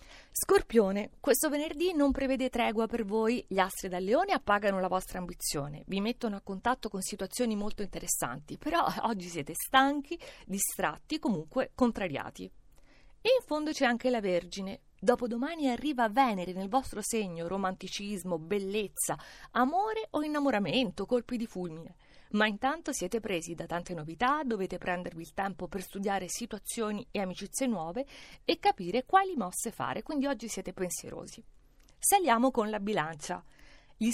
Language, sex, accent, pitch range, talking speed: Italian, female, native, 190-265 Hz, 150 wpm